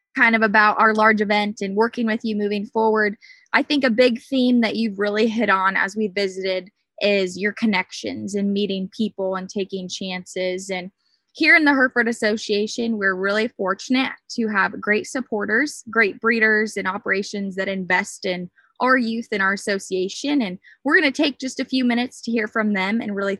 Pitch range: 200-250 Hz